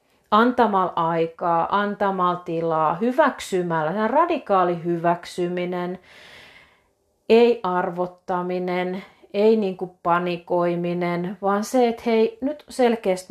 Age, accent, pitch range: 40-59, native, 175-230 Hz